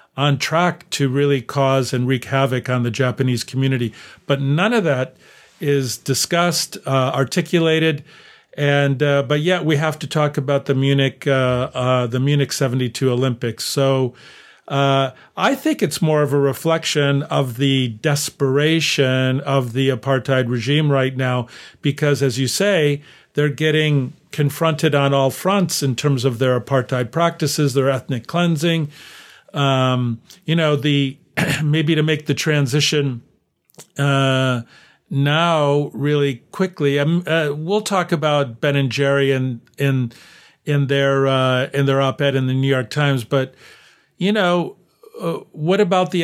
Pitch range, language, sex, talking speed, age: 130-155 Hz, English, male, 150 wpm, 50-69